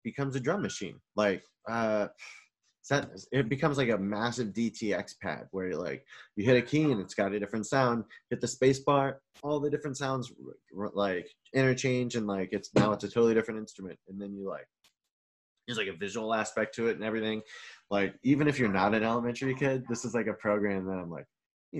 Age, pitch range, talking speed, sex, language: 20-39, 95-120 Hz, 210 wpm, male, English